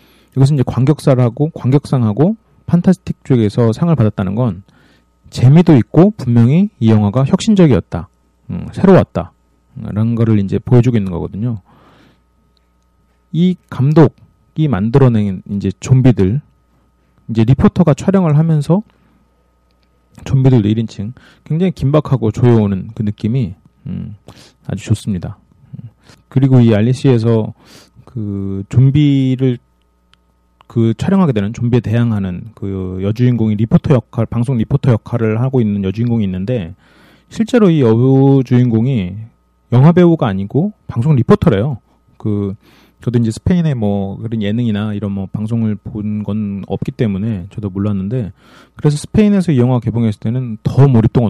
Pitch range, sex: 100-135 Hz, male